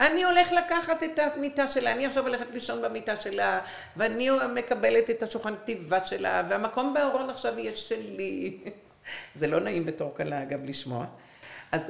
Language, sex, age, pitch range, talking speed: Hebrew, female, 50-69, 170-255 Hz, 155 wpm